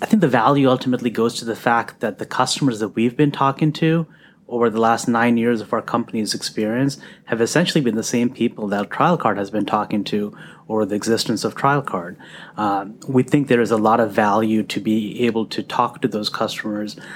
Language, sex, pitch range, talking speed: English, male, 105-120 Hz, 210 wpm